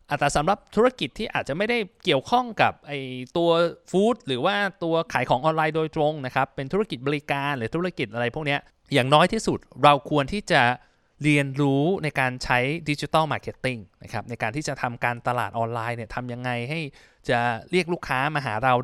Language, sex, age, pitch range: Thai, male, 20-39, 120-160 Hz